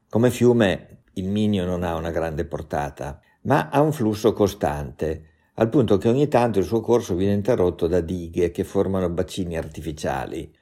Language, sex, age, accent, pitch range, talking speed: Italian, male, 50-69, native, 80-105 Hz, 170 wpm